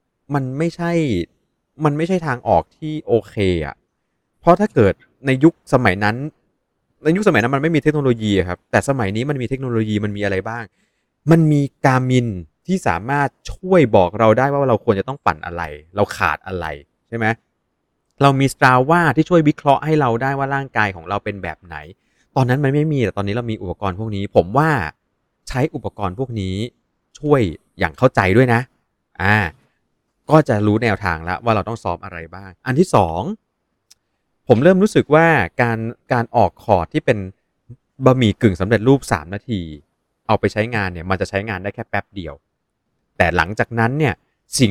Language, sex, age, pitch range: Thai, male, 20-39, 100-140 Hz